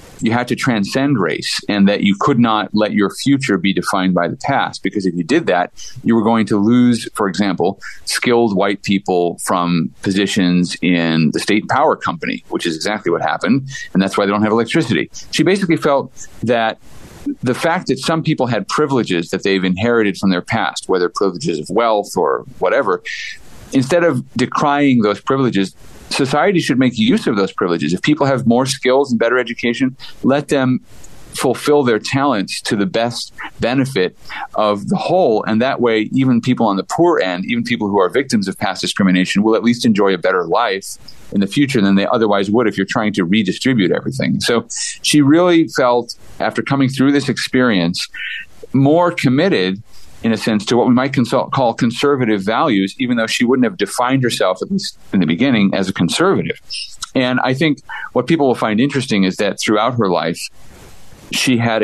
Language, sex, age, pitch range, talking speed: English, male, 40-59, 100-130 Hz, 185 wpm